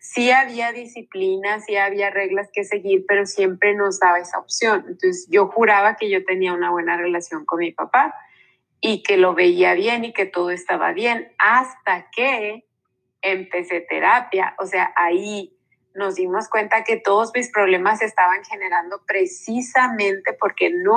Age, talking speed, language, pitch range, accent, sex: 30-49, 160 wpm, Spanish, 195-240 Hz, Mexican, female